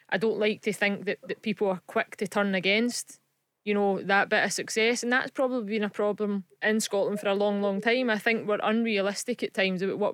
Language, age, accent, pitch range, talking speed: English, 20-39, British, 200-230 Hz, 235 wpm